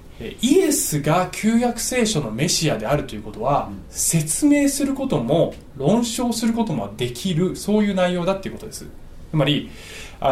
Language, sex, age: Japanese, male, 20-39